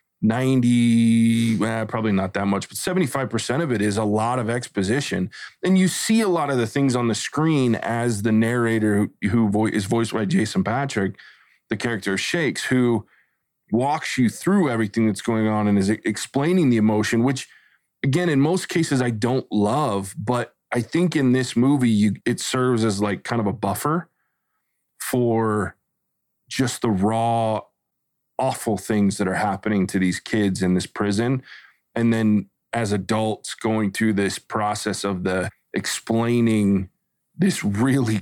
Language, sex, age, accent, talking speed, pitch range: English, male, 20-39, American, 160 wpm, 105-125 Hz